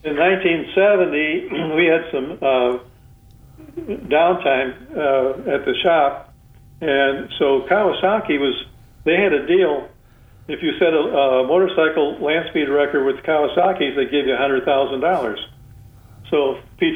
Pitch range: 130-165 Hz